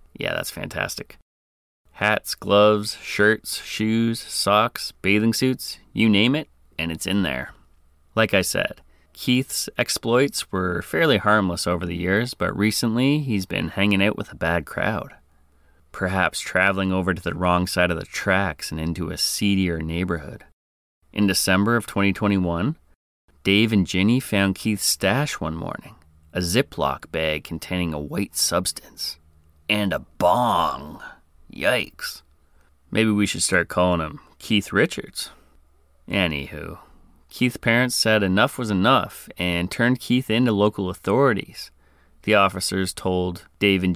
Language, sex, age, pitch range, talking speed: English, male, 30-49, 75-105 Hz, 140 wpm